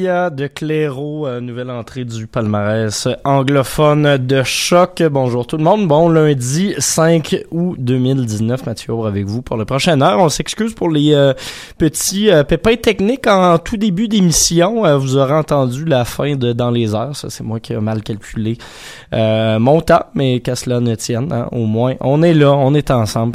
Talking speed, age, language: 185 wpm, 20-39, French